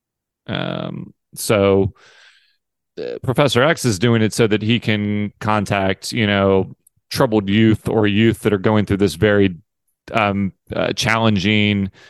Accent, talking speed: American, 140 wpm